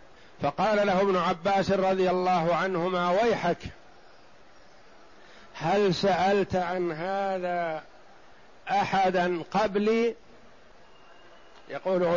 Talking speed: 75 wpm